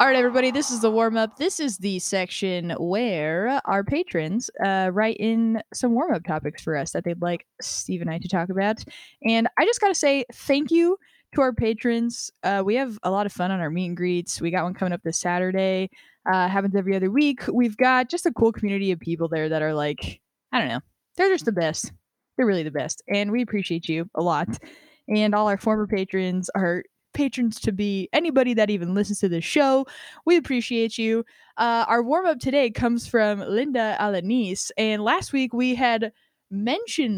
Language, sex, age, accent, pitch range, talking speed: English, female, 10-29, American, 185-250 Hz, 205 wpm